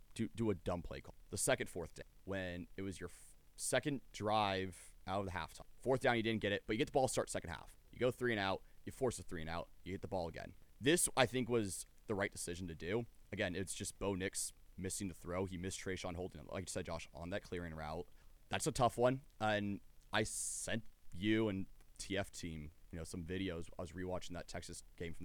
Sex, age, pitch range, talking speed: male, 30-49, 85-110 Hz, 240 wpm